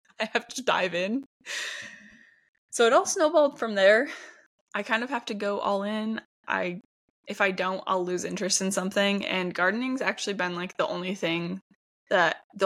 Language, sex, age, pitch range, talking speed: English, female, 10-29, 180-215 Hz, 180 wpm